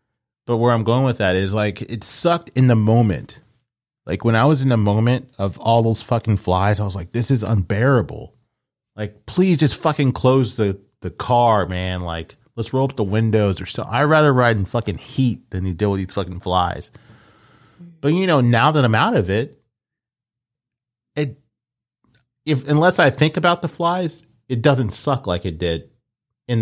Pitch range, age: 100-130 Hz, 30-49